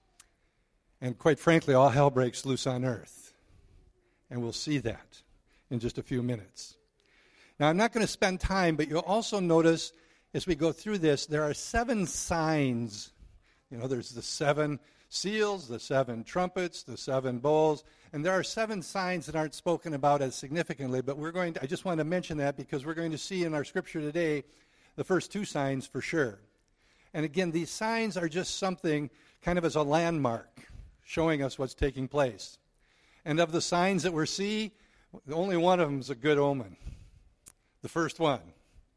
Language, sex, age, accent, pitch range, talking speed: English, male, 60-79, American, 130-170 Hz, 185 wpm